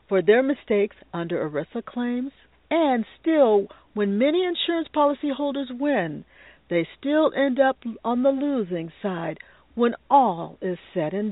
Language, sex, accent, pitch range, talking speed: English, female, American, 185-275 Hz, 140 wpm